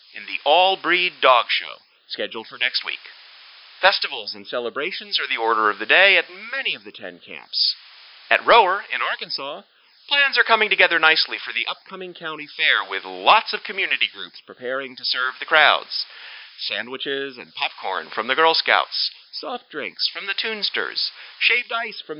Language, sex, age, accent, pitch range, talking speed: English, male, 40-59, American, 135-215 Hz, 170 wpm